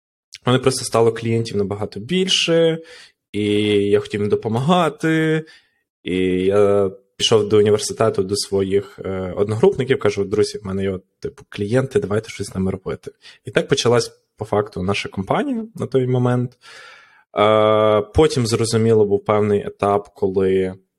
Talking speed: 130 wpm